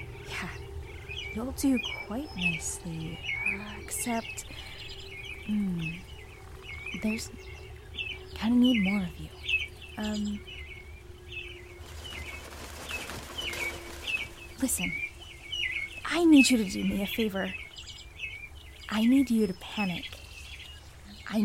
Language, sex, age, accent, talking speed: English, female, 20-39, American, 85 wpm